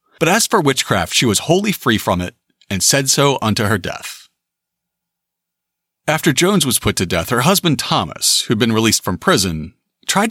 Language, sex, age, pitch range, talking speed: English, male, 40-59, 115-175 Hz, 180 wpm